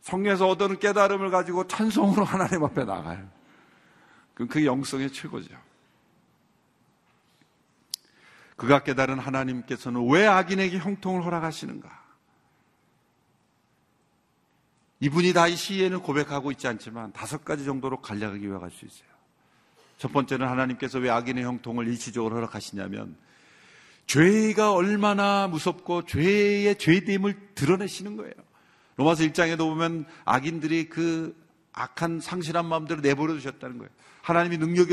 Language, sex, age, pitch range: Korean, male, 50-69, 140-185 Hz